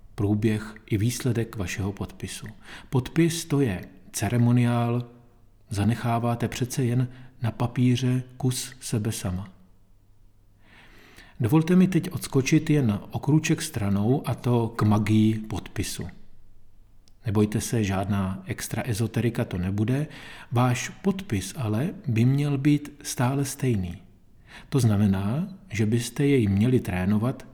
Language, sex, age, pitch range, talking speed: Czech, male, 40-59, 105-130 Hz, 115 wpm